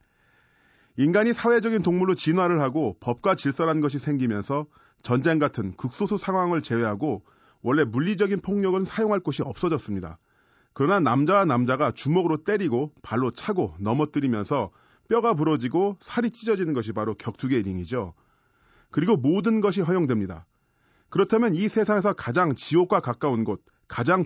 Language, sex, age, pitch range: Korean, male, 30-49, 120-180 Hz